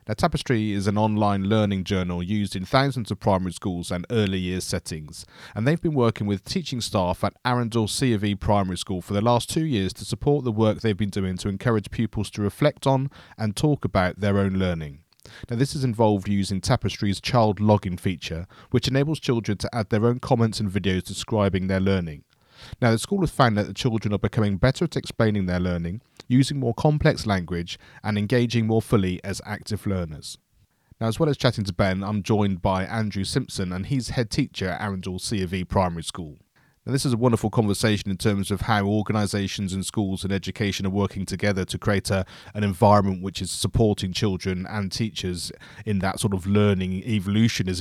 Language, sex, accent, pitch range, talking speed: English, male, British, 95-115 Hz, 200 wpm